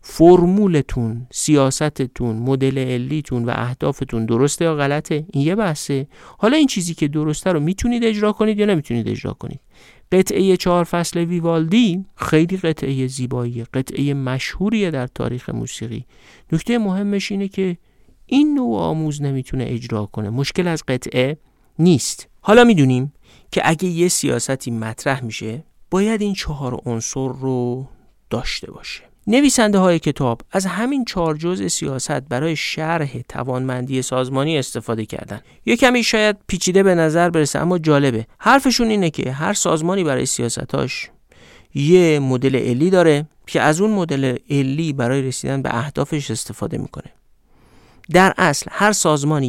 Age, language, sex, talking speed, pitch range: 50-69, Persian, male, 140 wpm, 130-180 Hz